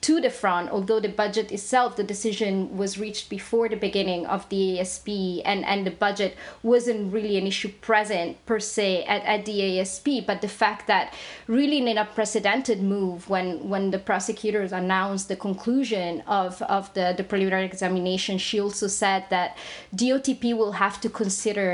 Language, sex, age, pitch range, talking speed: English, female, 30-49, 195-225 Hz, 175 wpm